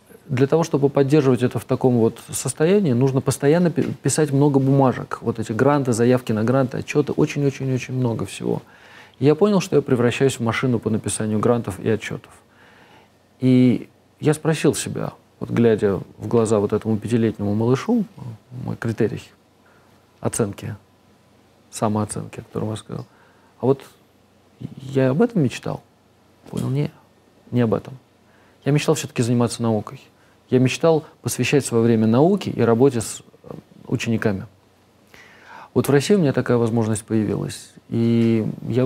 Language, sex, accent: Russian, male, native